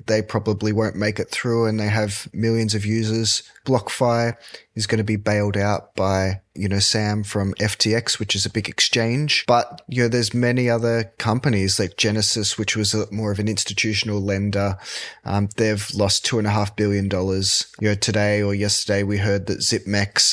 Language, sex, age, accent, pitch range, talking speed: English, male, 20-39, Australian, 100-110 Hz, 190 wpm